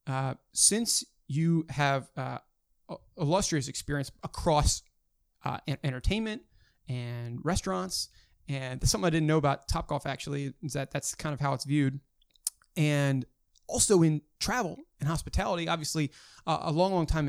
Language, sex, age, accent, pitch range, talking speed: English, male, 30-49, American, 135-170 Hz, 150 wpm